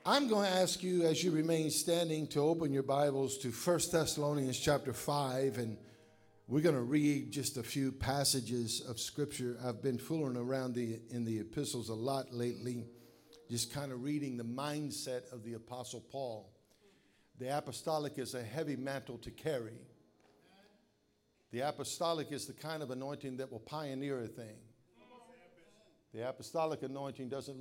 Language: English